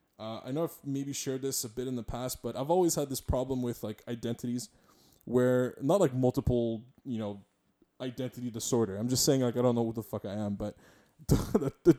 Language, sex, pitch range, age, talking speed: English, male, 120-150 Hz, 20-39, 220 wpm